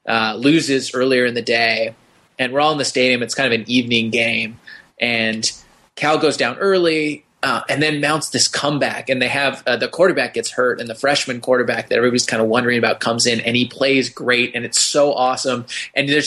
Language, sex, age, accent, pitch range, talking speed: English, male, 20-39, American, 130-150 Hz, 215 wpm